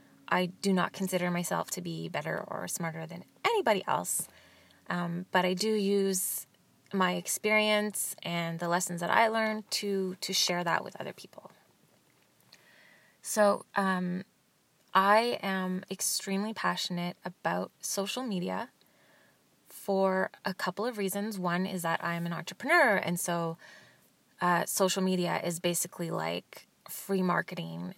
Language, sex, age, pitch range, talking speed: English, female, 20-39, 170-195 Hz, 135 wpm